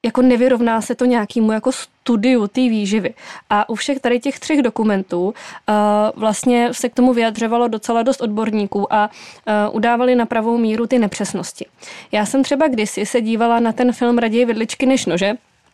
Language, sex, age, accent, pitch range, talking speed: Czech, female, 20-39, native, 215-250 Hz, 175 wpm